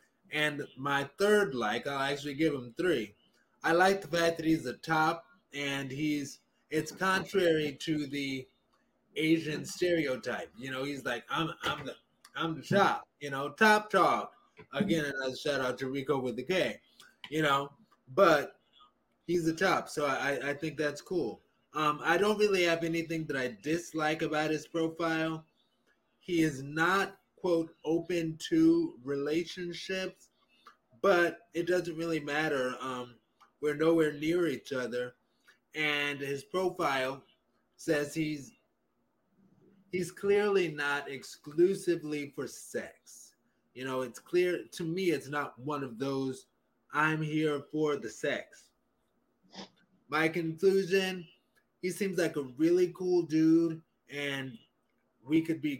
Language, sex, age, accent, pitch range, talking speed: English, male, 20-39, American, 140-175 Hz, 135 wpm